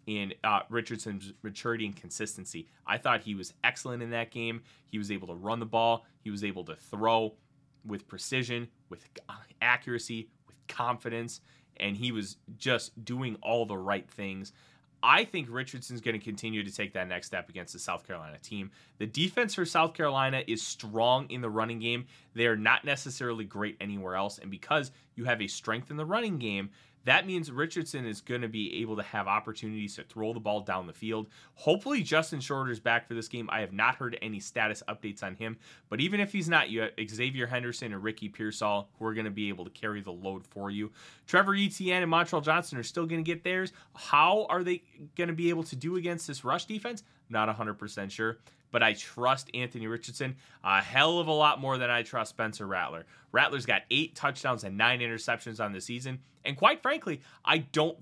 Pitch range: 105-145 Hz